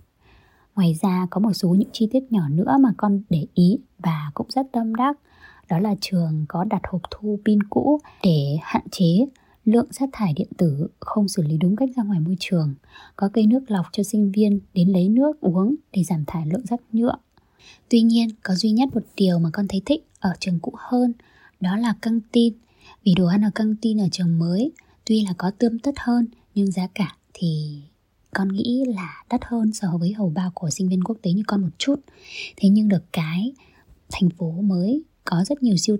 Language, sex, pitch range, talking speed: Vietnamese, female, 180-230 Hz, 215 wpm